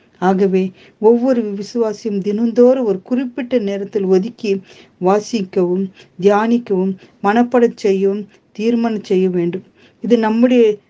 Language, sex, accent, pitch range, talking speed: Tamil, female, native, 195-240 Hz, 95 wpm